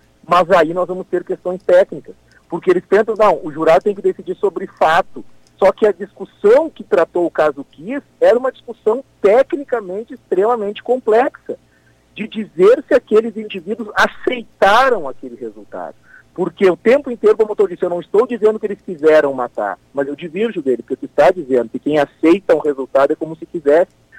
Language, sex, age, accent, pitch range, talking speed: Portuguese, male, 40-59, Brazilian, 145-215 Hz, 190 wpm